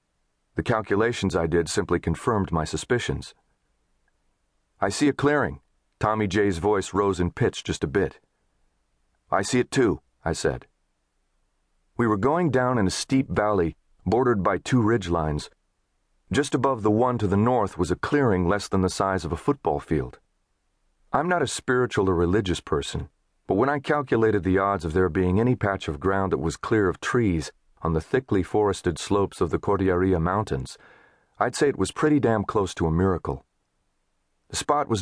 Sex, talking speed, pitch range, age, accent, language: male, 180 wpm, 90-115 Hz, 40-59, American, English